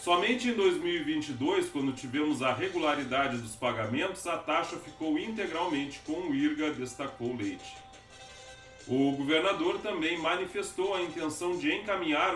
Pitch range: 130-205 Hz